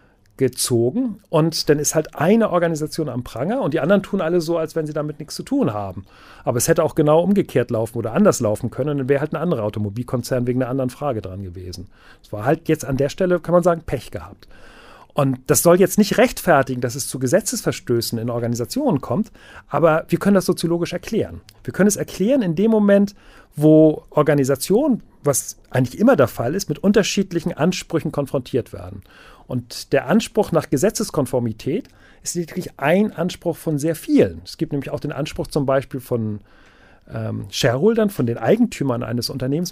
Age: 40-59